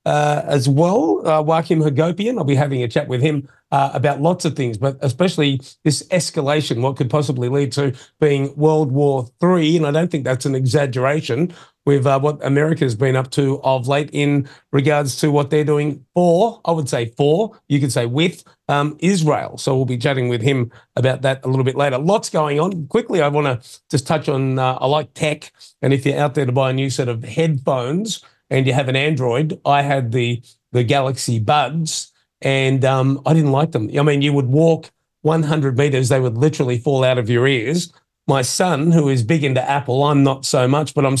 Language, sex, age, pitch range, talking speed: English, male, 40-59, 135-155 Hz, 215 wpm